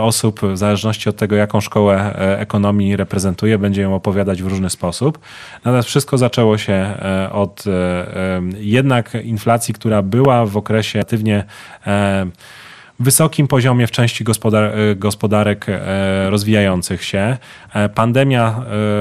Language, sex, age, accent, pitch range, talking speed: Polish, male, 30-49, native, 100-115 Hz, 120 wpm